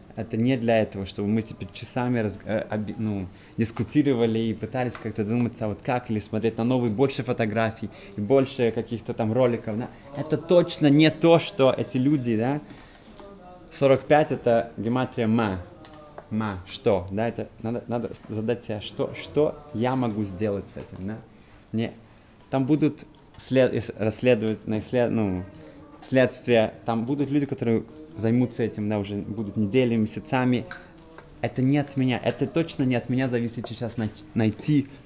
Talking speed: 150 wpm